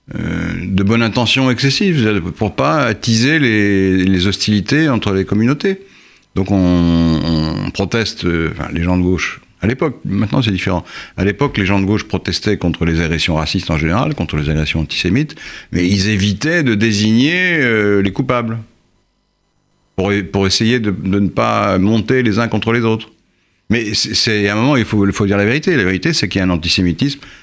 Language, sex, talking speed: French, male, 195 wpm